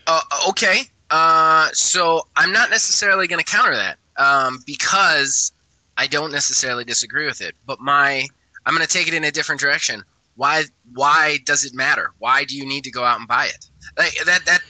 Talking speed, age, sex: 195 wpm, 20-39, male